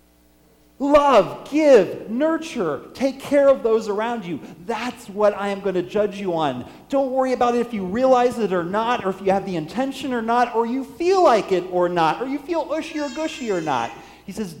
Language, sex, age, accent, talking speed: English, male, 40-59, American, 220 wpm